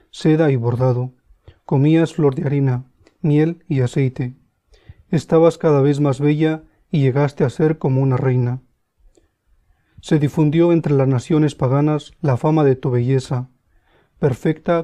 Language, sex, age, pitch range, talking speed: English, male, 40-59, 130-155 Hz, 140 wpm